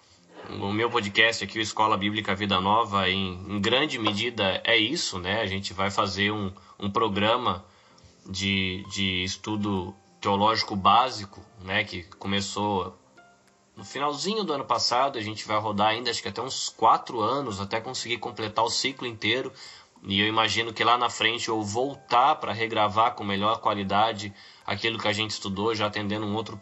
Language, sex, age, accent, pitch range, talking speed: Portuguese, male, 20-39, Brazilian, 100-120 Hz, 170 wpm